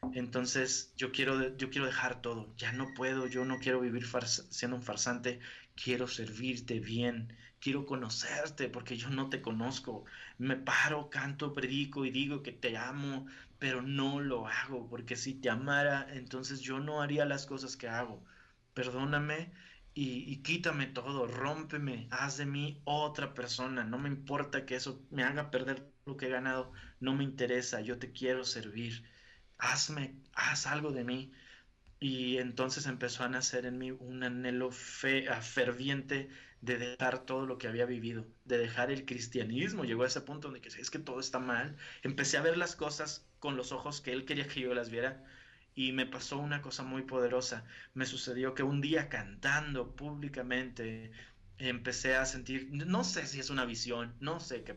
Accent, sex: Mexican, male